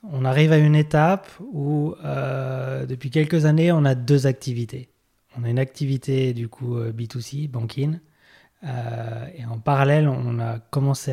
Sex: male